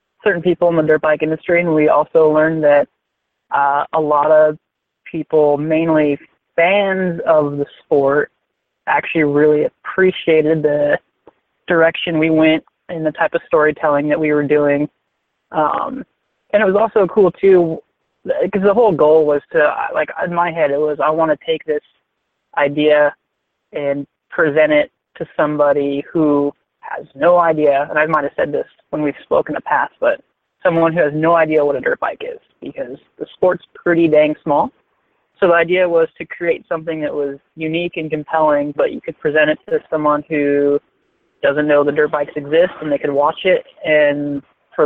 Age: 30-49